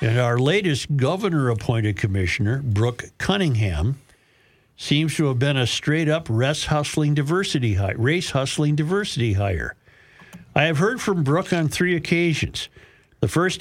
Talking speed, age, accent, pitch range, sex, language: 115 wpm, 50-69, American, 120-160 Hz, male, English